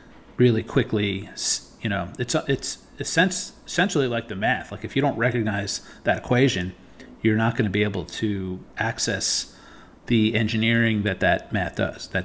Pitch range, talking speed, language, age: 100-125 Hz, 170 wpm, English, 40-59